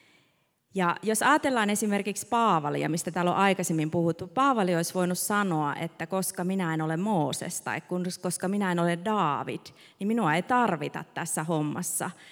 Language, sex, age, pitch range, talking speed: Finnish, female, 30-49, 160-205 Hz, 155 wpm